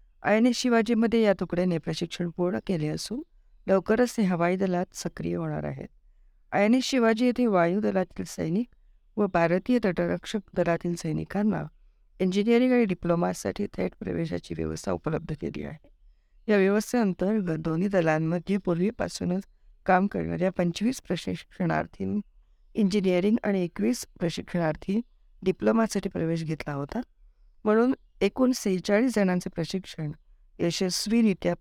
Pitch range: 165-210 Hz